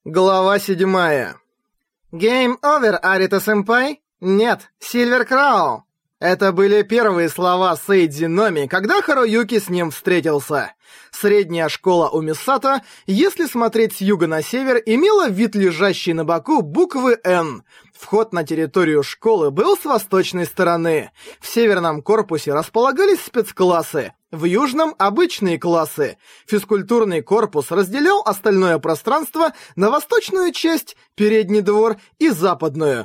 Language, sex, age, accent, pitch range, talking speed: Russian, male, 20-39, native, 175-265 Hz, 120 wpm